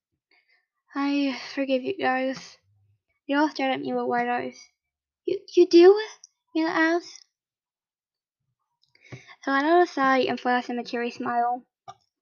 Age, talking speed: 10-29, 140 wpm